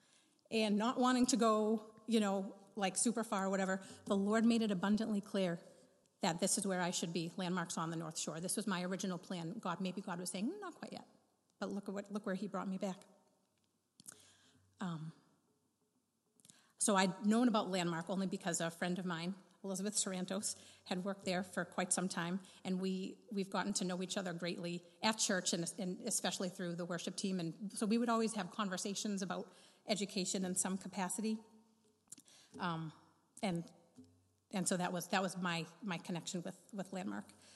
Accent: American